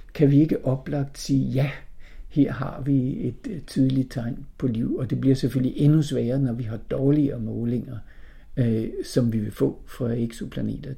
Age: 50-69